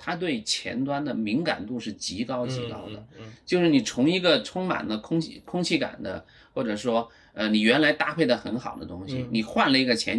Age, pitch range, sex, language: 30-49, 115-155 Hz, male, Chinese